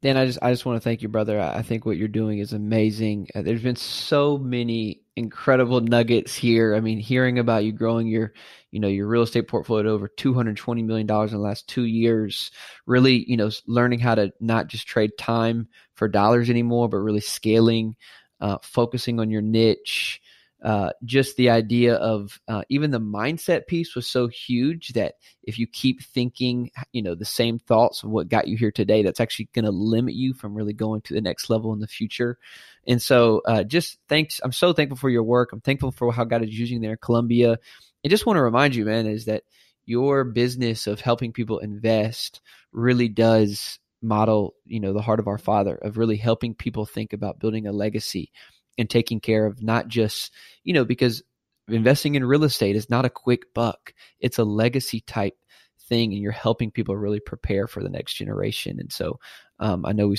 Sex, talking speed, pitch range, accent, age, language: male, 205 wpm, 110-125 Hz, American, 20-39, English